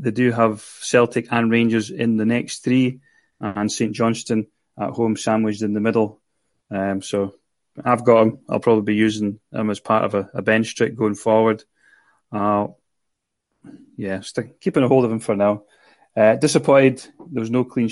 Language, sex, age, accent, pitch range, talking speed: English, male, 30-49, British, 105-125 Hz, 180 wpm